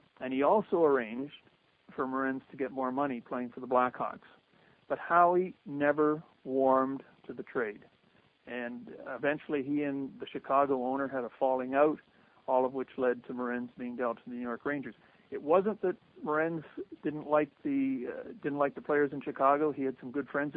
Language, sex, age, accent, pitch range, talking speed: English, male, 50-69, American, 130-150 Hz, 185 wpm